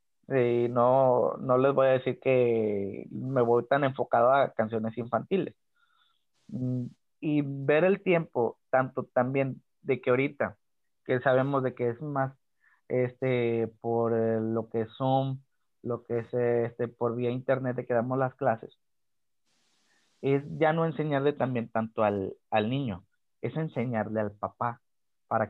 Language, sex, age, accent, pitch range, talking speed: Spanish, male, 30-49, Mexican, 115-140 Hz, 145 wpm